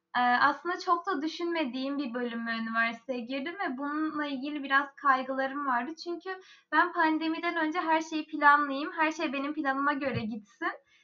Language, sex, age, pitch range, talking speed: Turkish, female, 10-29, 255-320 Hz, 145 wpm